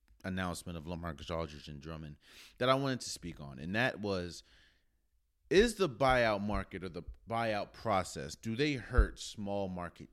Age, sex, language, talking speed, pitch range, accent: 30-49, male, English, 165 wpm, 80-120 Hz, American